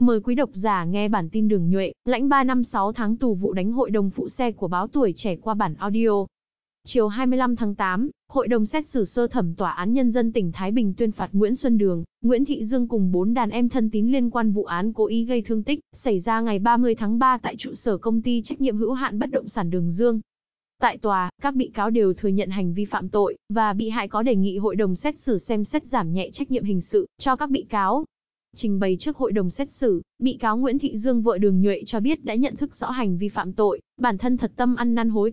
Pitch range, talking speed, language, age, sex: 205-245 Hz, 260 wpm, Vietnamese, 20-39, female